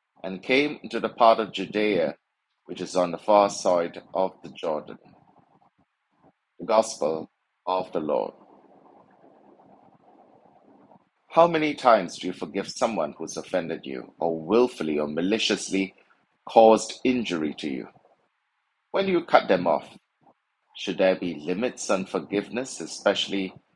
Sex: male